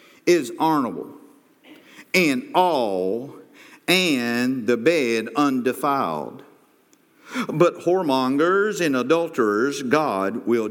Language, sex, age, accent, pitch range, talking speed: English, male, 50-69, American, 135-180 Hz, 80 wpm